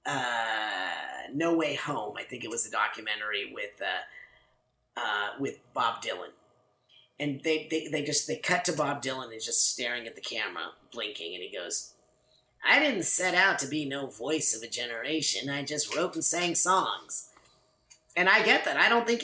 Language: English